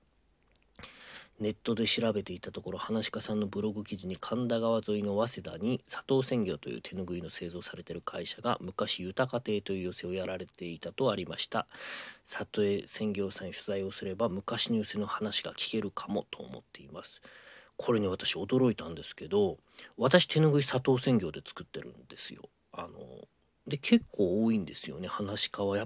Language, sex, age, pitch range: Japanese, male, 40-59, 95-125 Hz